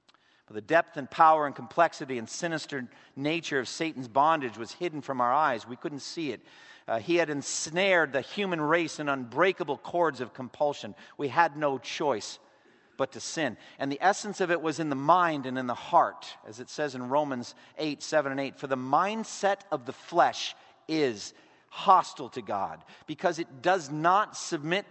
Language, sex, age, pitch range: English, male, 50-69, 130-170 Hz